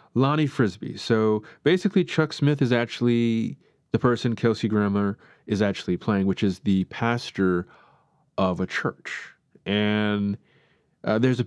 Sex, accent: male, American